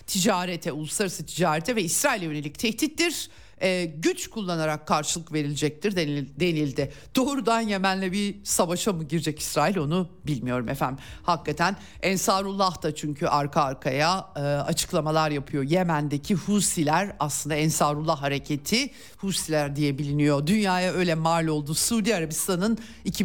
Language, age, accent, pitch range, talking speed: Turkish, 50-69, native, 150-200 Hz, 120 wpm